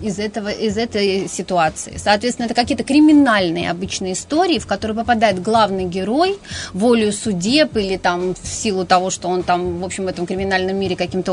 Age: 30-49